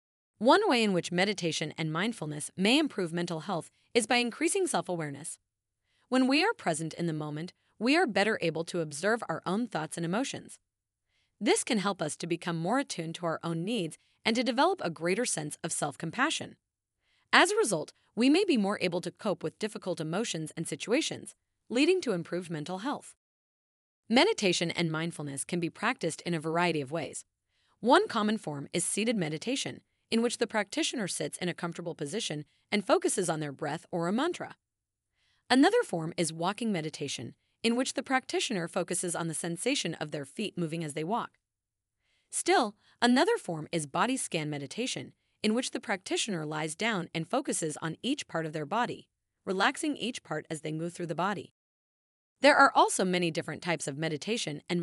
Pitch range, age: 160-235 Hz, 30-49